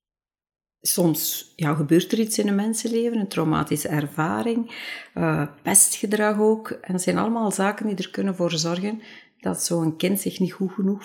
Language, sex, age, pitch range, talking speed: Dutch, female, 50-69, 150-195 Hz, 170 wpm